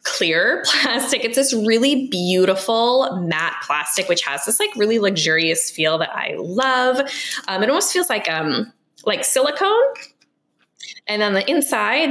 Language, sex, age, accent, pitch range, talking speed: English, female, 10-29, American, 175-255 Hz, 150 wpm